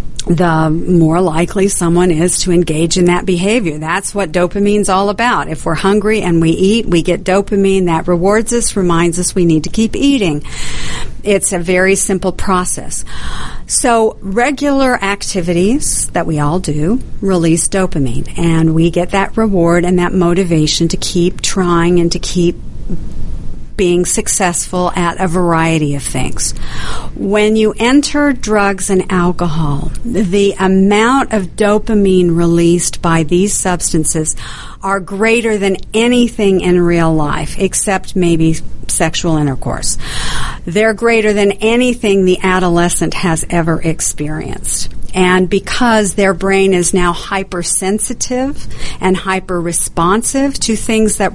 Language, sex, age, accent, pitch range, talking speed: English, female, 50-69, American, 170-200 Hz, 135 wpm